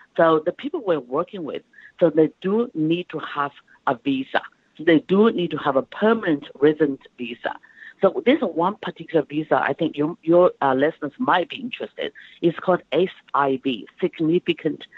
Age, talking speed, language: 50-69, 170 wpm, English